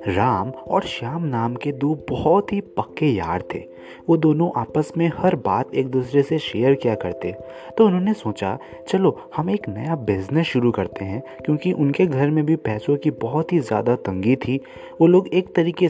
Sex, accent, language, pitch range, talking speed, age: male, native, Hindi, 115-170 Hz, 190 wpm, 30-49